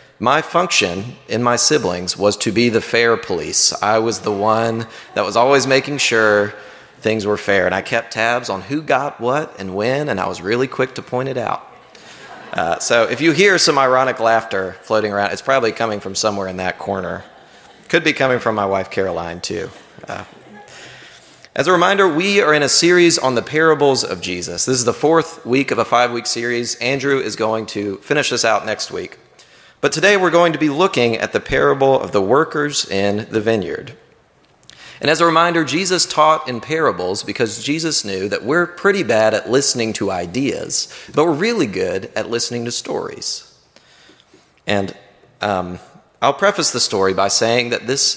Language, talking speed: English, 190 wpm